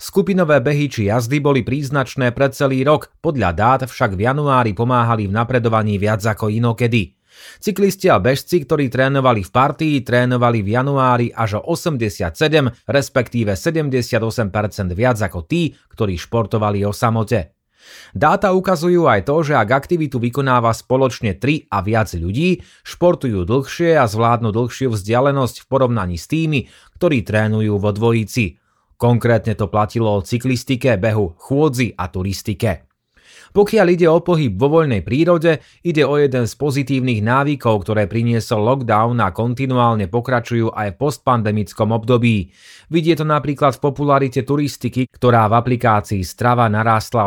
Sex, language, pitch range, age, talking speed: male, Slovak, 110-140 Hz, 30-49, 140 wpm